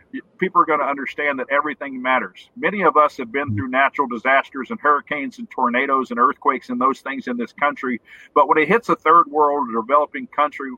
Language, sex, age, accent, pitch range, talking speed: English, male, 50-69, American, 130-175 Hz, 205 wpm